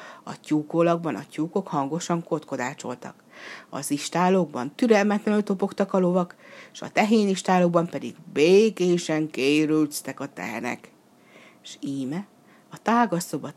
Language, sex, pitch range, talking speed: Hungarian, female, 150-205 Hz, 105 wpm